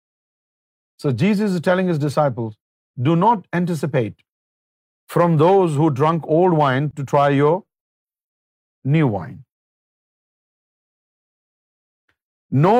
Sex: male